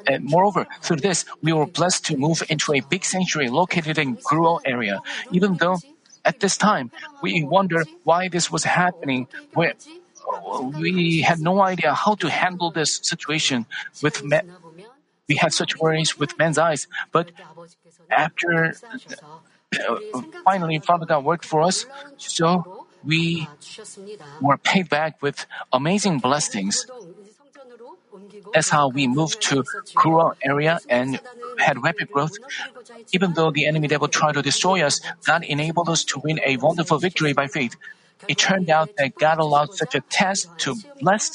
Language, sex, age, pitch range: Korean, male, 50-69, 155-200 Hz